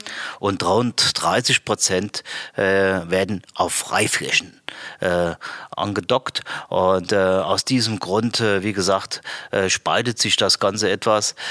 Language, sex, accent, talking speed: German, male, German, 125 wpm